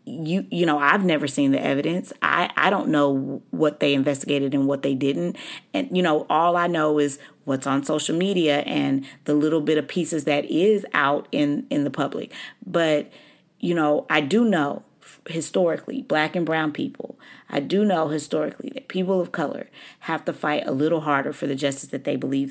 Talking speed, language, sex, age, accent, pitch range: 195 wpm, English, female, 30-49, American, 140-175 Hz